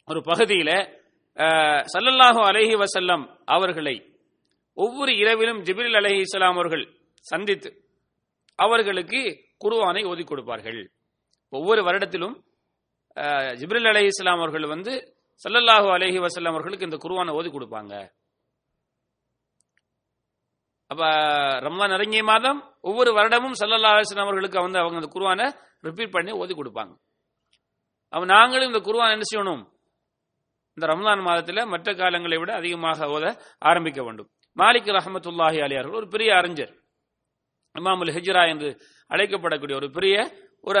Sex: male